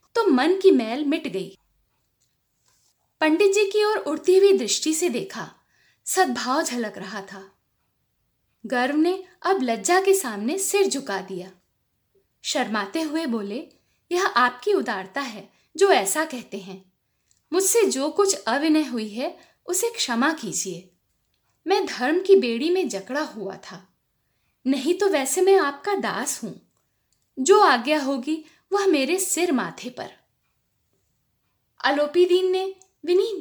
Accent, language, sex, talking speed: native, Hindi, female, 130 wpm